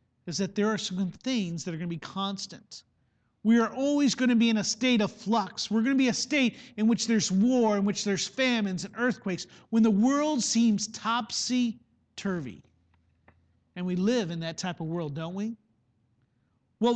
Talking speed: 185 wpm